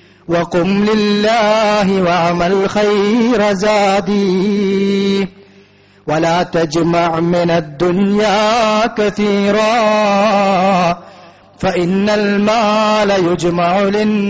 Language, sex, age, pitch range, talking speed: Malayalam, male, 30-49, 145-190 Hz, 45 wpm